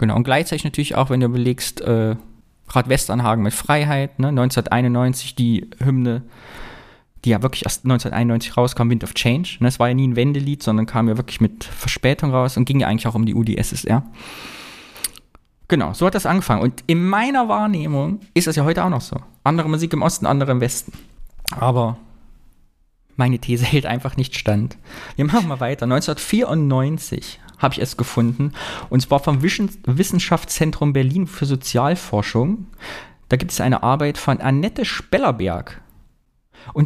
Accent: German